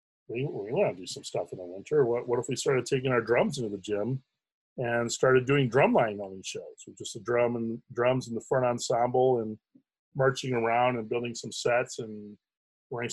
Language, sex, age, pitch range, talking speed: English, male, 30-49, 105-135 Hz, 195 wpm